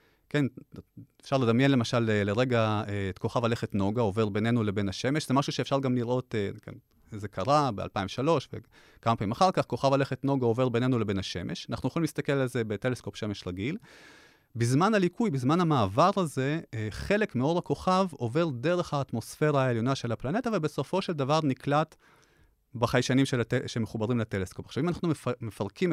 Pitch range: 110-145 Hz